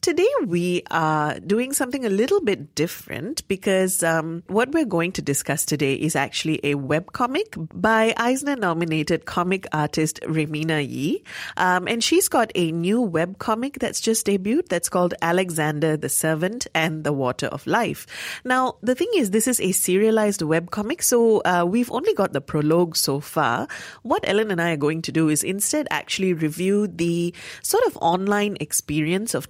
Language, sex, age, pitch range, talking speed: English, female, 30-49, 155-215 Hz, 170 wpm